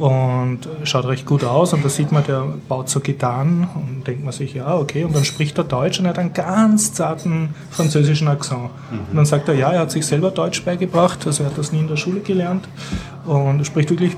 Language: German